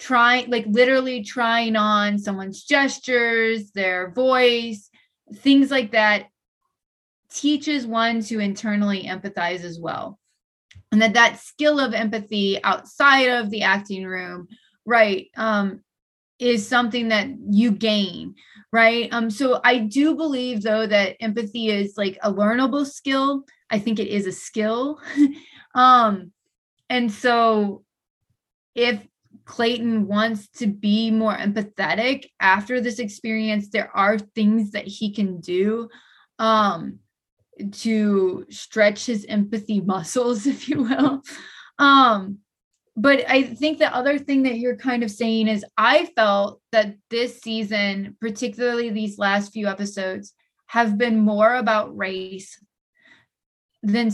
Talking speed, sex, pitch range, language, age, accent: 125 wpm, female, 205-245 Hz, English, 30-49, American